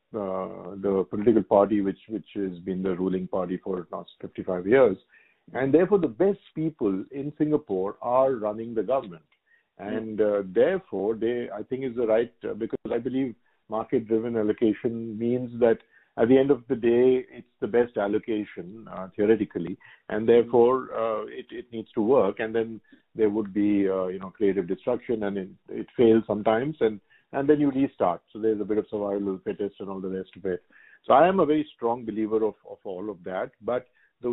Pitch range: 105-135 Hz